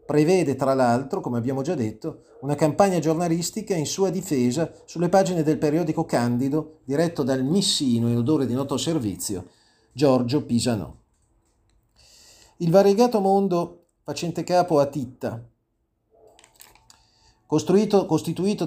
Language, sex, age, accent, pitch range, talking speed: Italian, male, 40-59, native, 130-185 Hz, 115 wpm